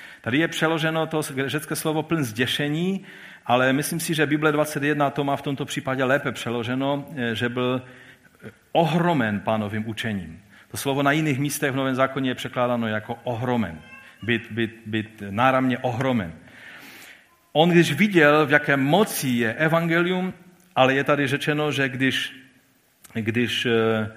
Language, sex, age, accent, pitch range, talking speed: Czech, male, 50-69, native, 110-145 Hz, 135 wpm